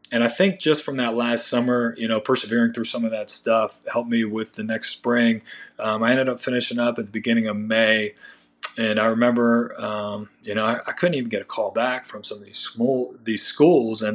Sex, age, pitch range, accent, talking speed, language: male, 30-49, 110-125 Hz, American, 235 wpm, English